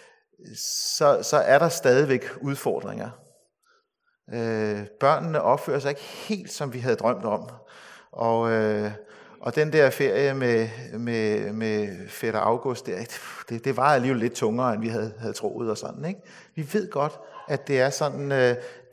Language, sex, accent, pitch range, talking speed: Danish, male, native, 120-175 Hz, 160 wpm